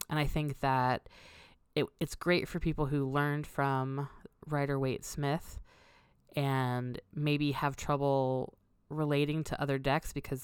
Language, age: English, 20-39